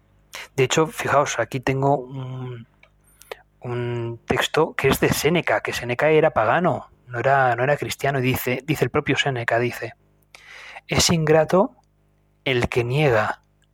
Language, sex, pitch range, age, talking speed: Spanish, male, 125-160 Hz, 30-49, 145 wpm